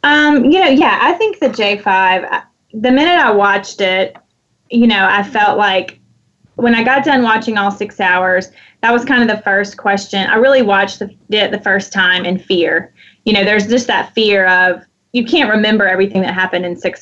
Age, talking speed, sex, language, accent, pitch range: 20-39, 200 wpm, female, English, American, 190-230 Hz